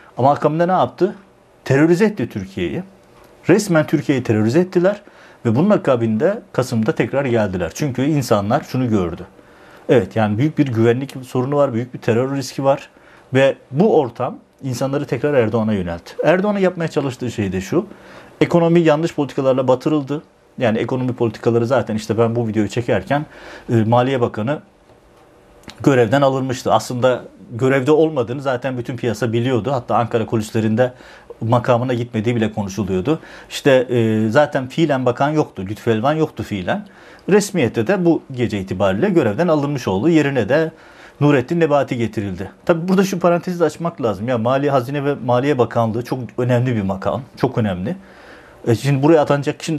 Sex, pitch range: male, 115-150 Hz